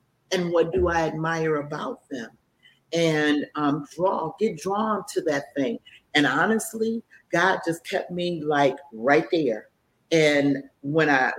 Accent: American